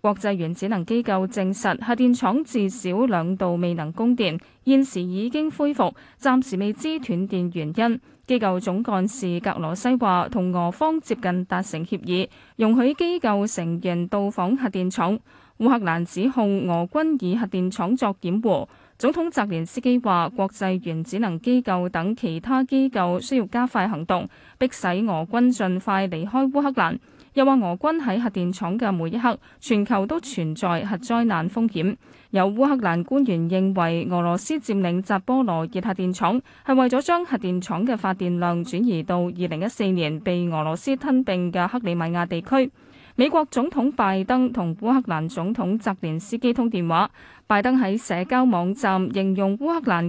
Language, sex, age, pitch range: Chinese, female, 20-39, 180-250 Hz